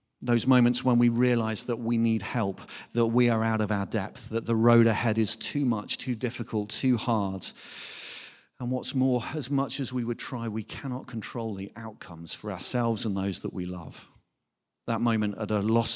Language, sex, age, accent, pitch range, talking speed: English, male, 40-59, British, 105-120 Hz, 200 wpm